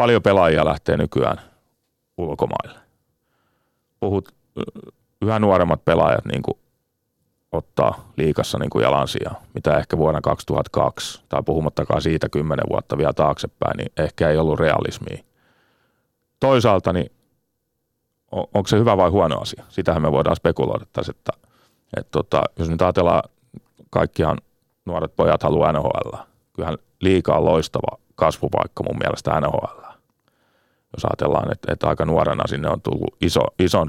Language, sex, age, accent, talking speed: Finnish, male, 30-49, native, 130 wpm